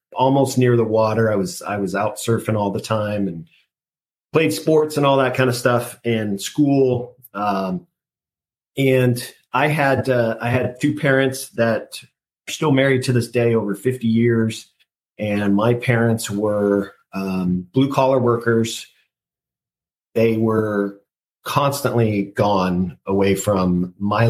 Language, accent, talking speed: English, American, 145 wpm